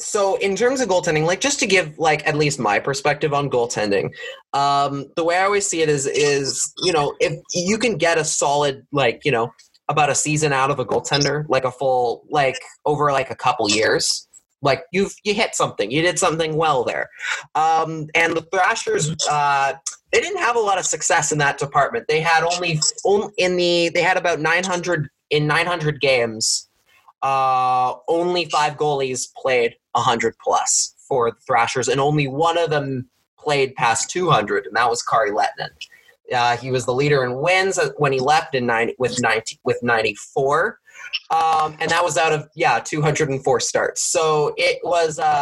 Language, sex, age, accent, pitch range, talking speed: English, male, 20-39, American, 145-195 Hz, 185 wpm